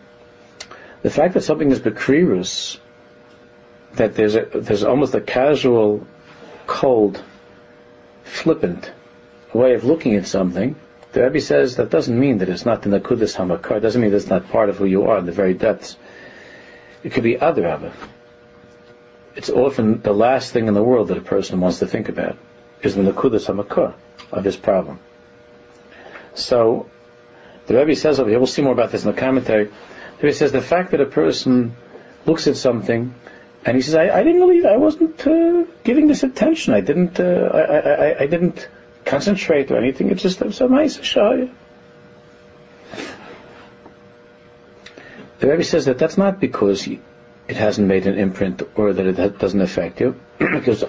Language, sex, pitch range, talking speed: English, male, 110-160 Hz, 170 wpm